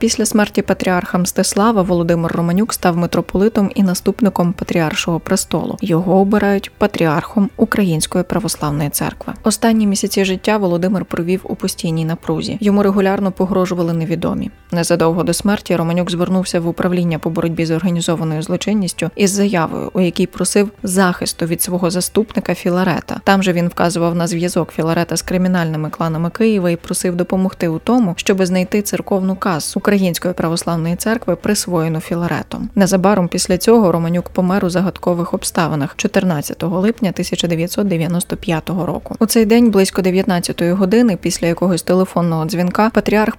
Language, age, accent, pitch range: Ukrainian, 20-39, native, 170-205 Hz